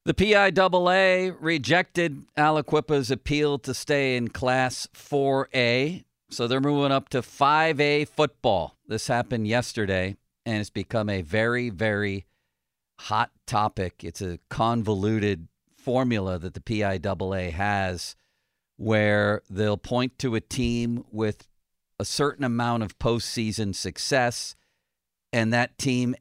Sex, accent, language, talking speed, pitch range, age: male, American, English, 120 wpm, 100-135 Hz, 50-69